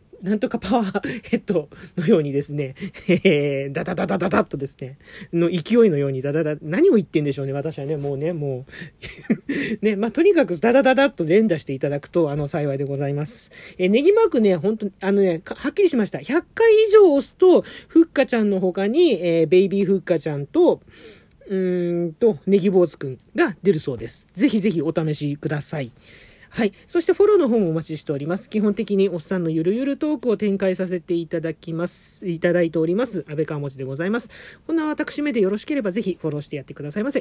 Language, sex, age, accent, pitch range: Japanese, male, 40-59, native, 155-215 Hz